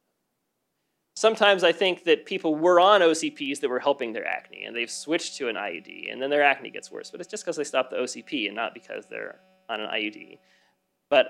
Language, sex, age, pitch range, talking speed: English, male, 20-39, 150-195 Hz, 220 wpm